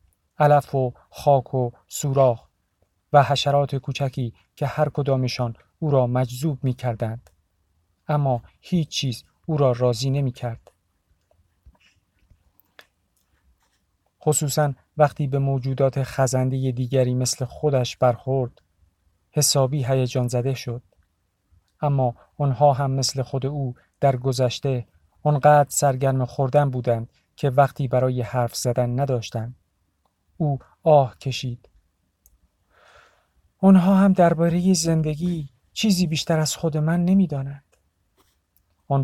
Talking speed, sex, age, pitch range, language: 100 wpm, male, 50-69, 115-140 Hz, Persian